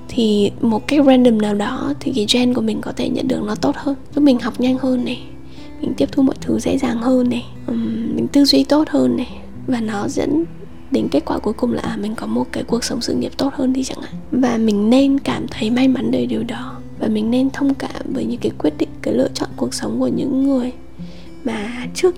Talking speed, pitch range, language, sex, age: 245 wpm, 220-275 Hz, Vietnamese, female, 10-29